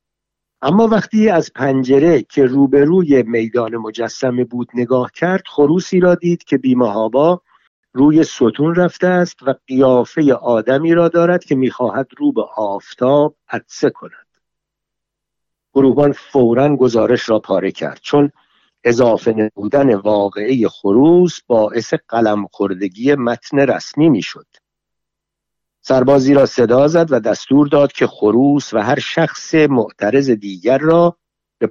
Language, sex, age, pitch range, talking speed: Persian, male, 50-69, 115-155 Hz, 120 wpm